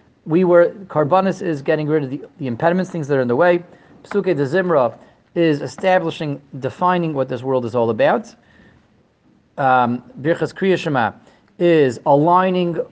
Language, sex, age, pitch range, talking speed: English, male, 30-49, 140-185 Hz, 155 wpm